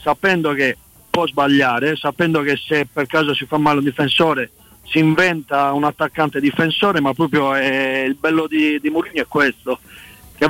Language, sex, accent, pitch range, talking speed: Italian, male, native, 130-155 Hz, 170 wpm